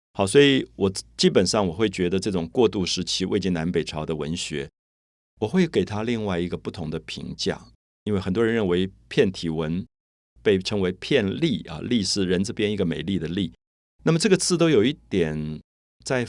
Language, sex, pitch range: Chinese, male, 80-115 Hz